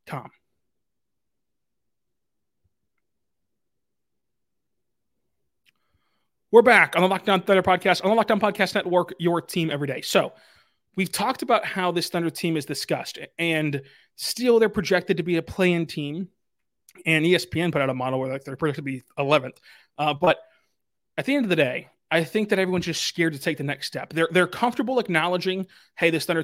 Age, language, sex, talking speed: 30-49, English, male, 165 wpm